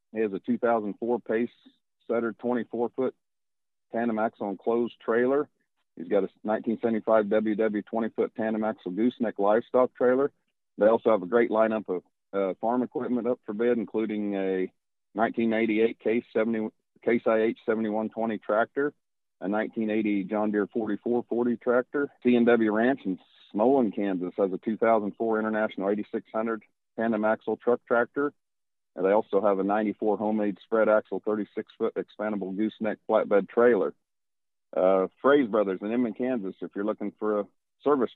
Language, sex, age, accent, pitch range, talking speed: English, male, 40-59, American, 105-115 Hz, 140 wpm